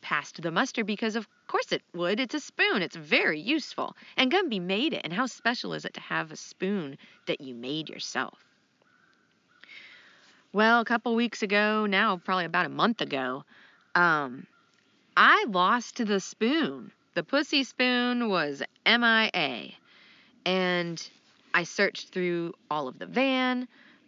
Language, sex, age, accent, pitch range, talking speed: English, female, 30-49, American, 160-225 Hz, 150 wpm